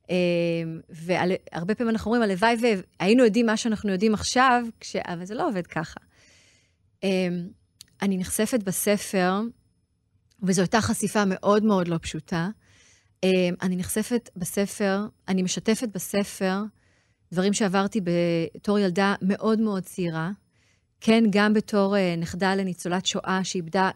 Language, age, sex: Hebrew, 30-49, female